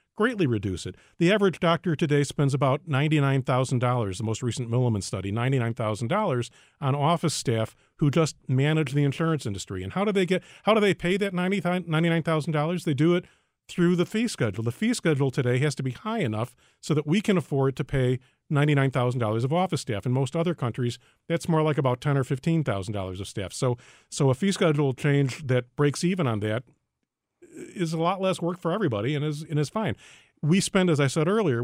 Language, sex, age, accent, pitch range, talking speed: English, male, 40-59, American, 130-175 Hz, 210 wpm